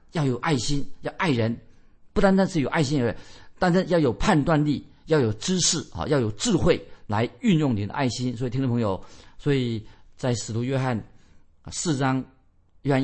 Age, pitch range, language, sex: 50-69, 115-160 Hz, Chinese, male